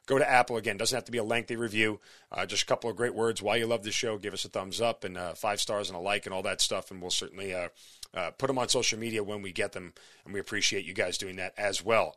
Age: 40-59